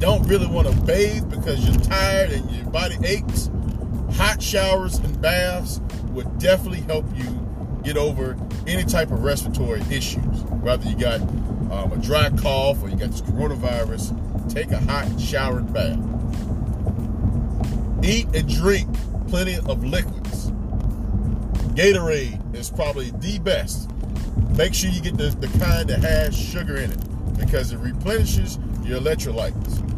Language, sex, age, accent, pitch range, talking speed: English, male, 40-59, American, 90-110 Hz, 145 wpm